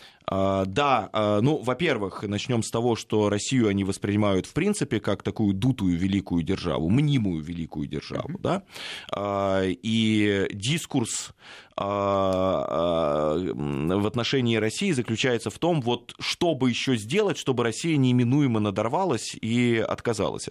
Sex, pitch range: male, 105-140 Hz